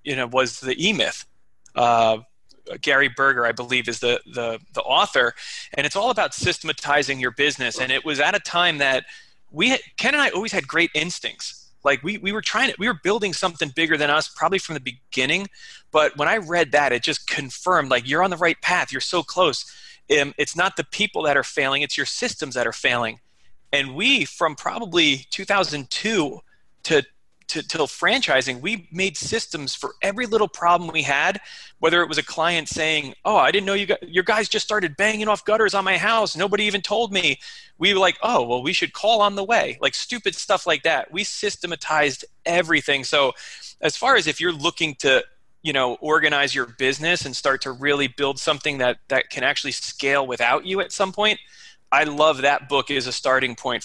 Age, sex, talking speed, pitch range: 30-49, male, 205 wpm, 135-195 Hz